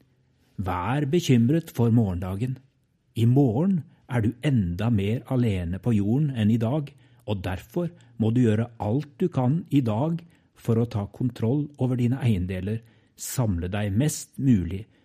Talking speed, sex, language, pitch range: 150 wpm, male, English, 105-135 Hz